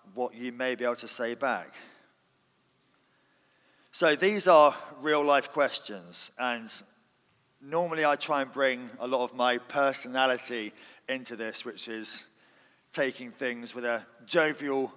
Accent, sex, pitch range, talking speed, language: British, male, 115-140 Hz, 130 wpm, English